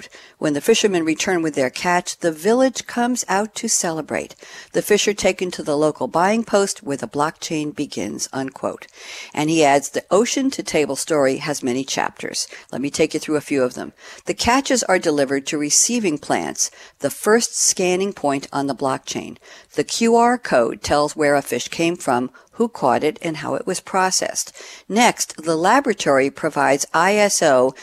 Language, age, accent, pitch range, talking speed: English, 60-79, American, 140-195 Hz, 180 wpm